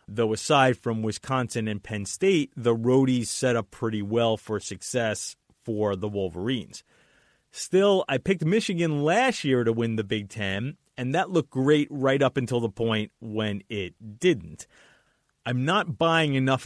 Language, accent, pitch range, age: English, American, 110-145 Hz, 30-49